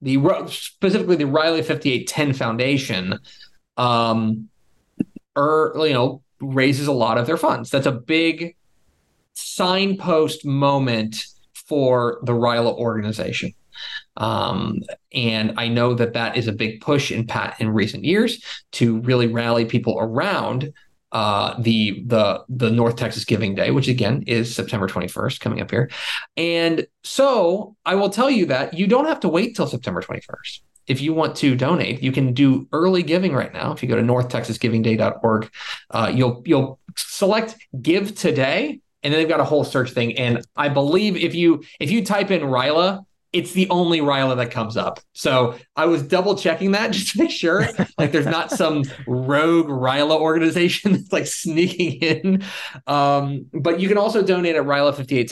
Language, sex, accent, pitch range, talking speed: English, male, American, 115-170 Hz, 170 wpm